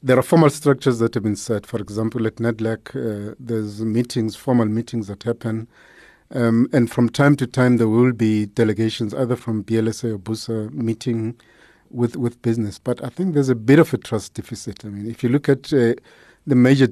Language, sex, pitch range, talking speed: English, male, 115-130 Hz, 200 wpm